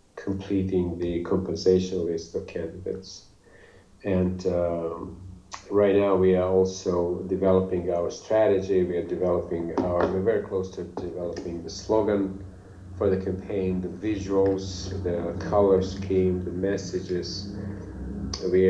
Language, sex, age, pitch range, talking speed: English, male, 40-59, 90-95 Hz, 120 wpm